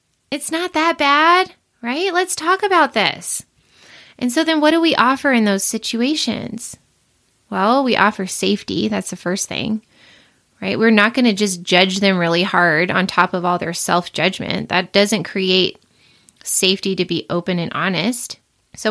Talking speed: 165 wpm